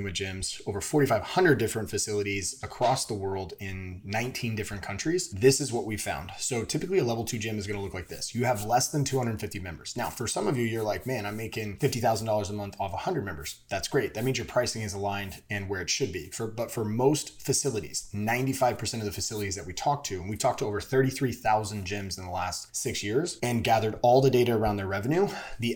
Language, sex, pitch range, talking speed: English, male, 100-130 Hz, 230 wpm